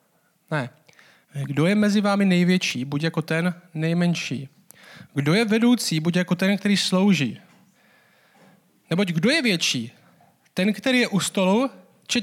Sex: male